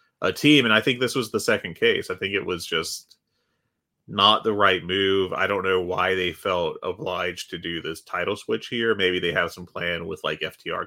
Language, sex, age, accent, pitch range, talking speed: English, male, 30-49, American, 90-125 Hz, 220 wpm